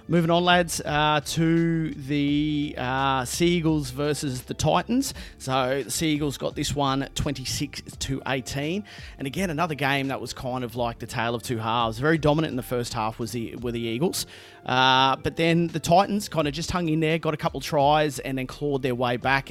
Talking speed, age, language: 205 wpm, 30-49, English